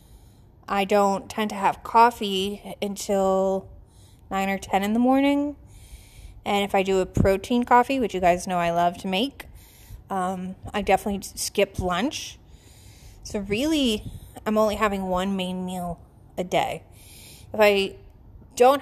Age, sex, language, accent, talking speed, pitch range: 20-39, female, English, American, 145 wpm, 165-220 Hz